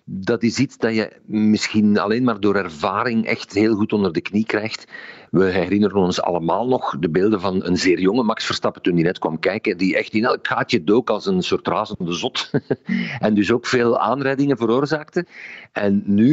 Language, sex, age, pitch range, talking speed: Dutch, male, 50-69, 105-140 Hz, 200 wpm